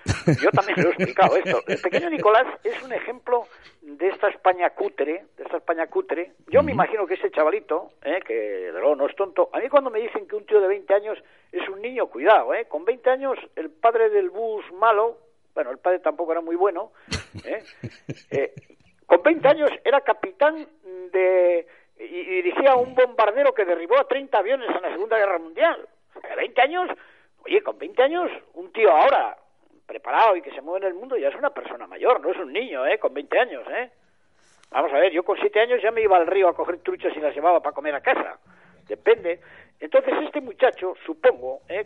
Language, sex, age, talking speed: Spanish, male, 50-69, 215 wpm